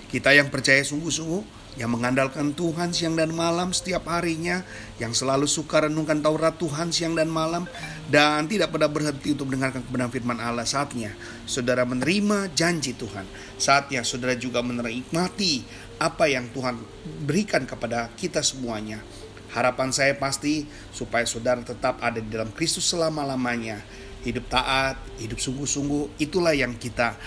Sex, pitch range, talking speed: male, 120-155 Hz, 140 wpm